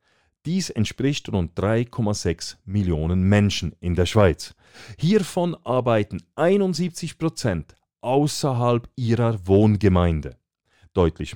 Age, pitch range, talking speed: 40-59, 95-145 Hz, 90 wpm